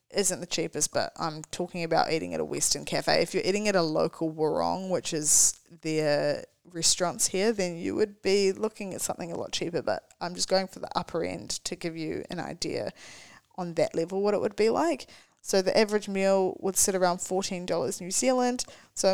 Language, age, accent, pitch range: English, 10-29, Australian, 170-205 Hz